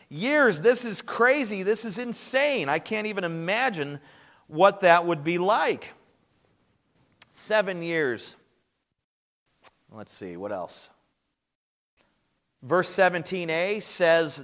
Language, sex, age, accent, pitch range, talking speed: English, male, 40-59, American, 160-210 Hz, 105 wpm